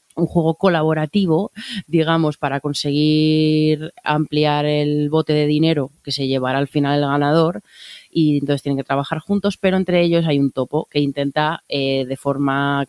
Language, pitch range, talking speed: Spanish, 140-165 Hz, 165 wpm